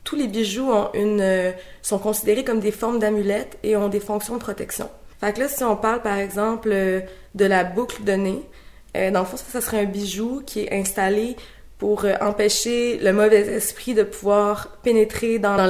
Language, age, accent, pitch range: French, 20-39, Canadian, 195-225 Hz